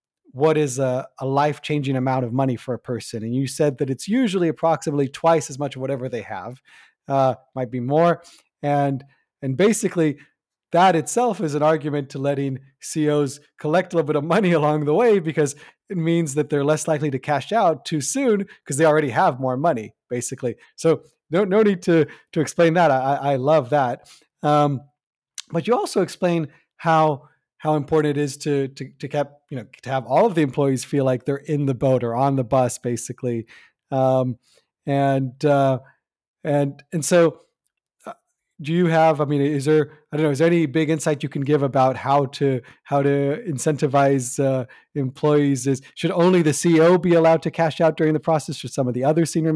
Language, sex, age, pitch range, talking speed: English, male, 30-49, 135-160 Hz, 200 wpm